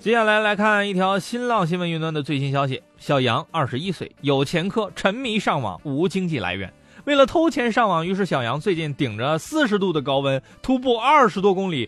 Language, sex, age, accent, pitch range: Chinese, male, 20-39, native, 140-215 Hz